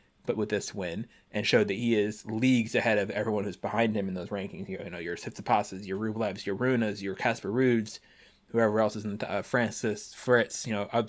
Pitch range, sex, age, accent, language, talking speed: 105-120 Hz, male, 20-39, American, English, 235 wpm